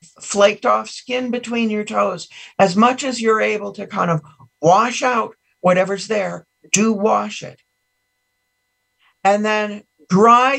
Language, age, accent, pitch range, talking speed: English, 50-69, American, 160-230 Hz, 135 wpm